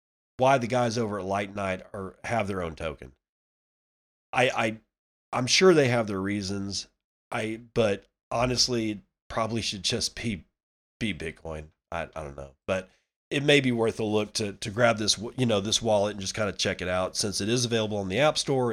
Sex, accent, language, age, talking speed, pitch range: male, American, English, 30-49, 200 wpm, 90-115 Hz